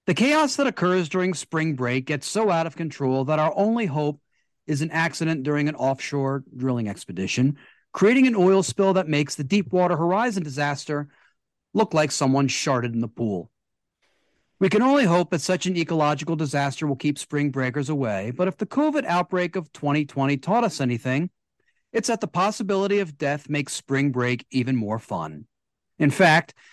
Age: 40-59